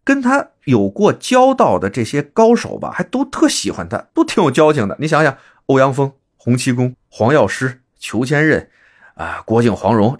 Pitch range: 95-150 Hz